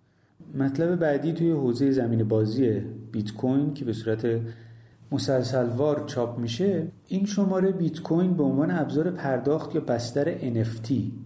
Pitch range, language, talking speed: 115-155 Hz, Persian, 140 wpm